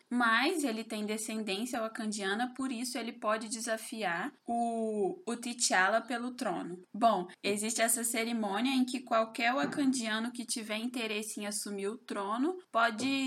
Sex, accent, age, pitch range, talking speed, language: female, Brazilian, 20-39, 205-250 Hz, 140 wpm, Portuguese